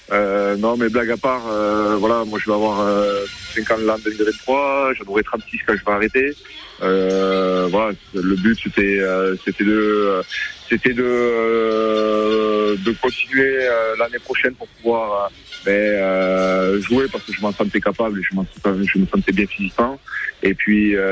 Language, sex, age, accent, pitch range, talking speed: French, male, 30-49, French, 100-115 Hz, 175 wpm